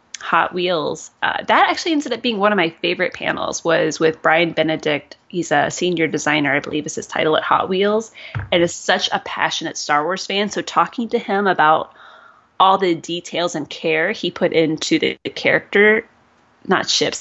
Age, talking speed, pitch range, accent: 20-39, 190 wpm, 165-235 Hz, American